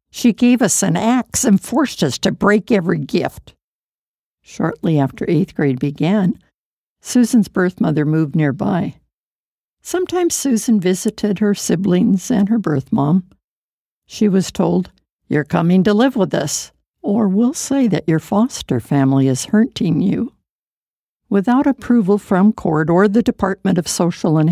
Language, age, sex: English, 60-79, female